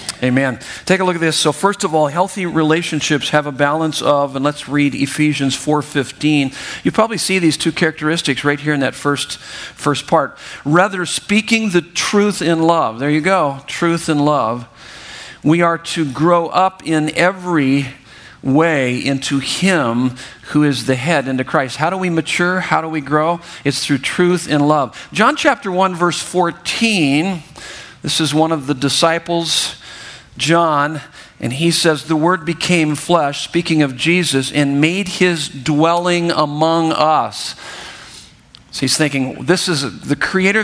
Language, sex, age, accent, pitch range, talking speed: English, male, 50-69, American, 145-175 Hz, 165 wpm